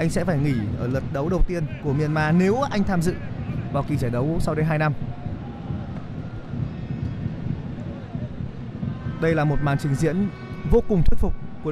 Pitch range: 140-200 Hz